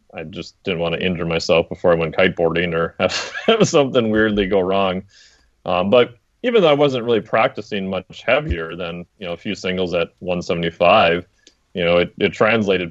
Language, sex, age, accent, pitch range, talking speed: English, male, 30-49, American, 85-105 Hz, 185 wpm